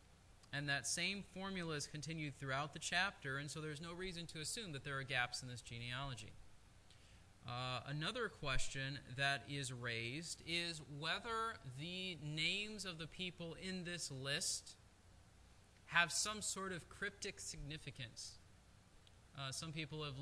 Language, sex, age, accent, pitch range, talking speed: English, male, 20-39, American, 125-165 Hz, 145 wpm